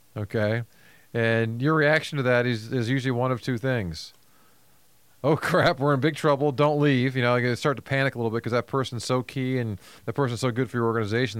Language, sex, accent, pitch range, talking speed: English, male, American, 115-140 Hz, 225 wpm